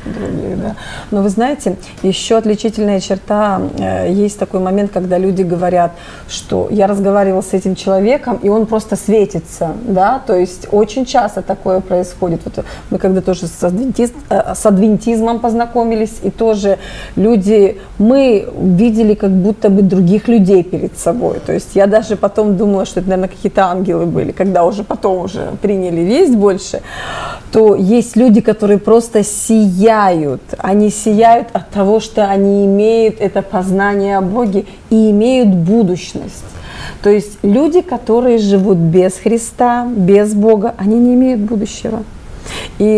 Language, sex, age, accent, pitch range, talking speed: Russian, female, 30-49, native, 190-225 Hz, 145 wpm